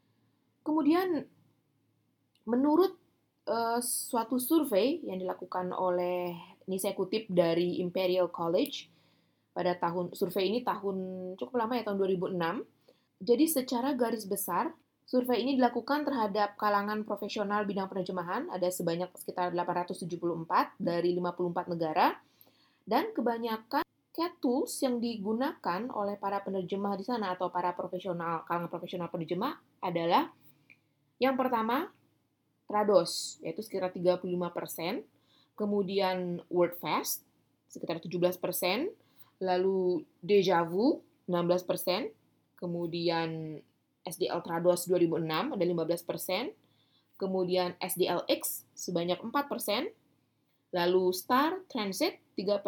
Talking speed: 100 wpm